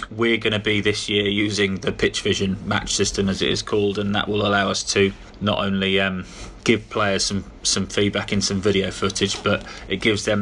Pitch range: 100-105 Hz